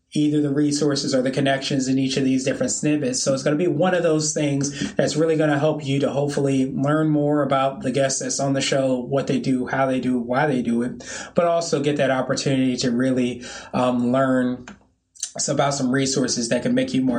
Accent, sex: American, male